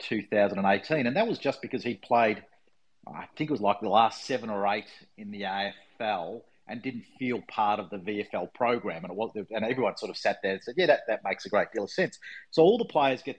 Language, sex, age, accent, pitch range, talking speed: English, male, 40-59, Australian, 100-125 Hz, 240 wpm